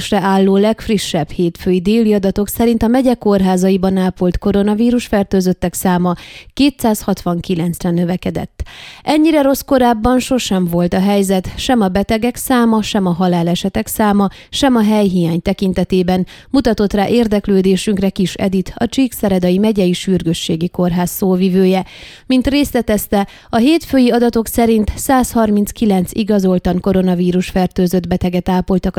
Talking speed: 120 wpm